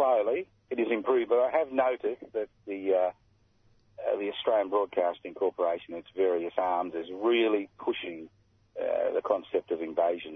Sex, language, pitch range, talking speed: male, English, 90-125 Hz, 155 wpm